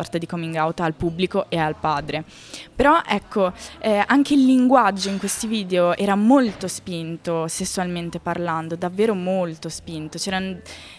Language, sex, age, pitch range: Italian, female, 20-39, 180-270 Hz